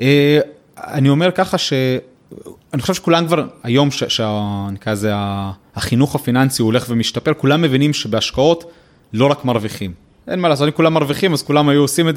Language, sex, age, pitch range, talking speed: Hebrew, male, 30-49, 115-160 Hz, 155 wpm